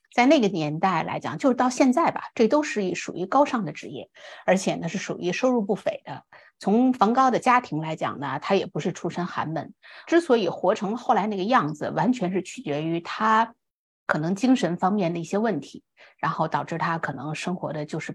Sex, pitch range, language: female, 165-220 Hz, Chinese